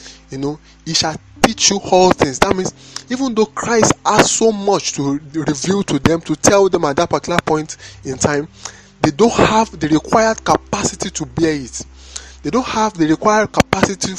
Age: 20-39